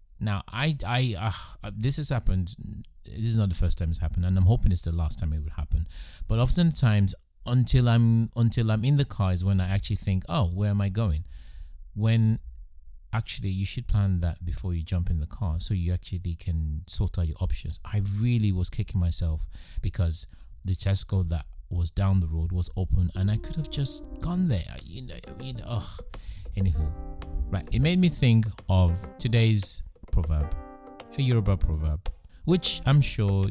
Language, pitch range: English, 85-110 Hz